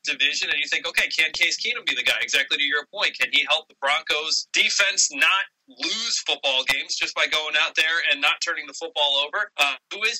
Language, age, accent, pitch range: English, 20-39, American, 165-220 Hz